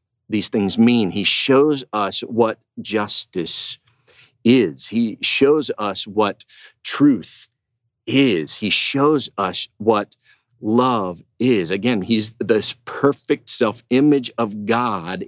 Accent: American